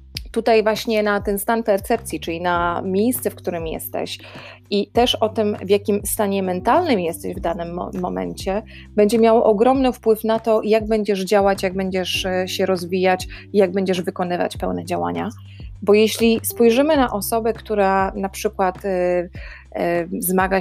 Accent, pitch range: native, 175-205 Hz